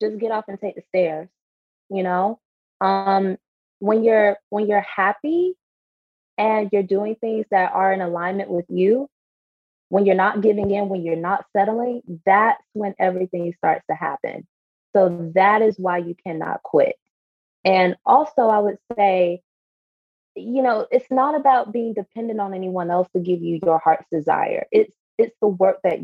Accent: American